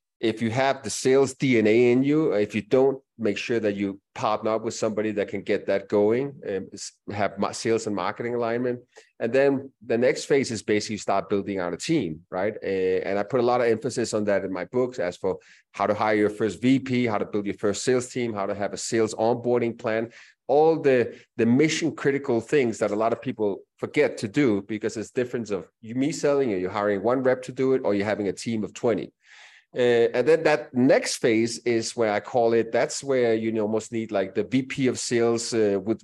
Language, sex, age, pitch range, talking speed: English, male, 30-49, 105-125 Hz, 230 wpm